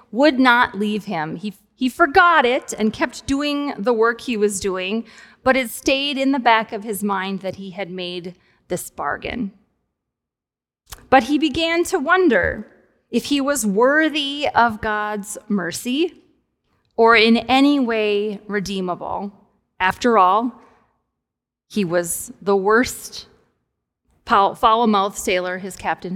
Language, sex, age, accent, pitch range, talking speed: English, female, 30-49, American, 195-255 Hz, 135 wpm